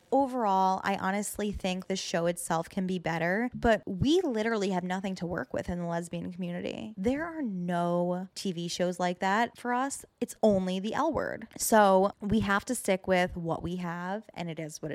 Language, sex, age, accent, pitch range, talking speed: English, female, 20-39, American, 175-215 Hz, 195 wpm